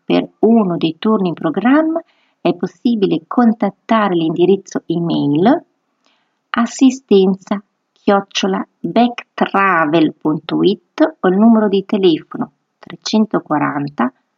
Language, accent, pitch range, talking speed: Italian, native, 180-260 Hz, 80 wpm